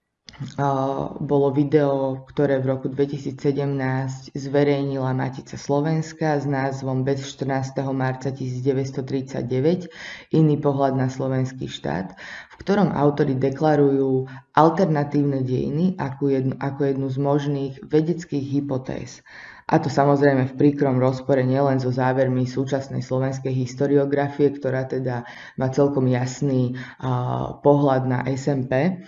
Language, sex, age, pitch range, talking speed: Slovak, female, 20-39, 130-145 Hz, 115 wpm